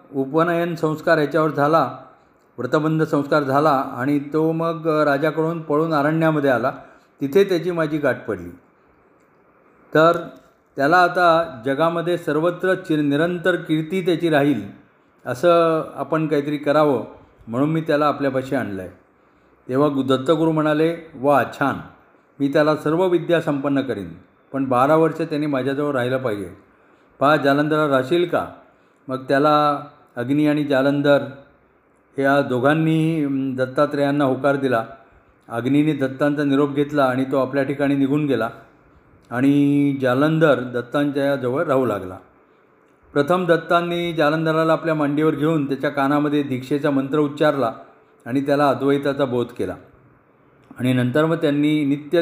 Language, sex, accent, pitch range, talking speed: Marathi, male, native, 135-160 Hz, 125 wpm